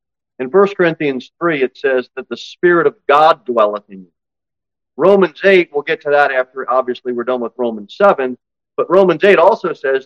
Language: English